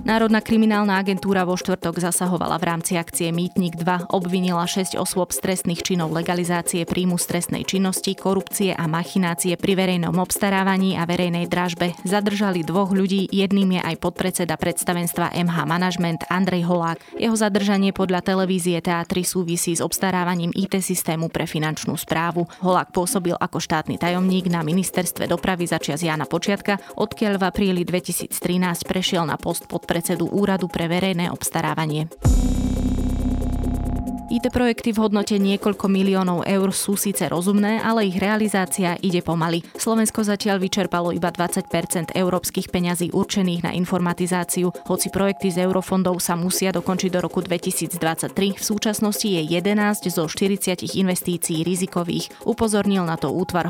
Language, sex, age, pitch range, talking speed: Slovak, female, 20-39, 170-195 Hz, 135 wpm